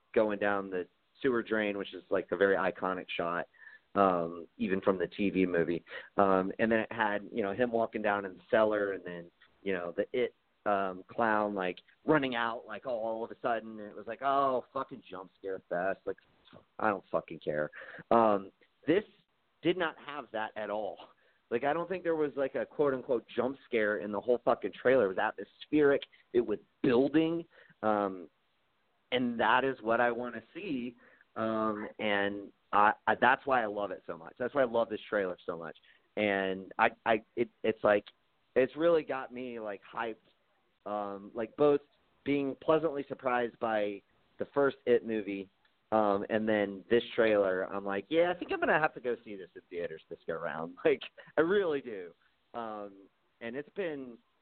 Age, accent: 30-49, American